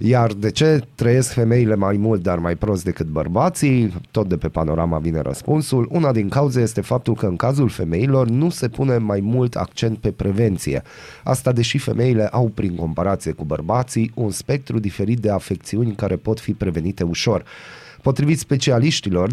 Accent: native